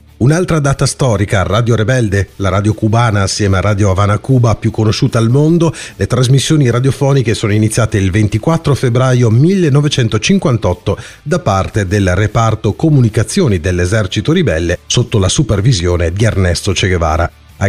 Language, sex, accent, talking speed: Italian, male, native, 140 wpm